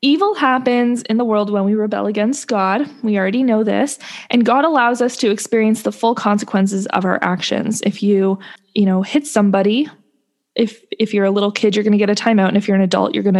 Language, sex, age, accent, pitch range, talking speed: English, female, 20-39, American, 190-230 Hz, 230 wpm